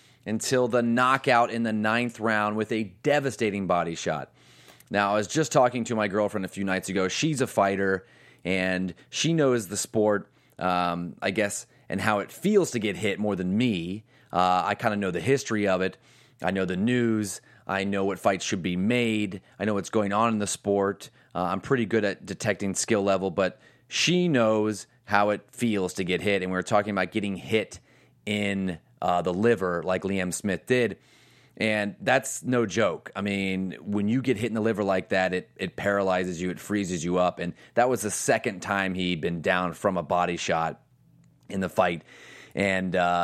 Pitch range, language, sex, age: 95-115 Hz, English, male, 30-49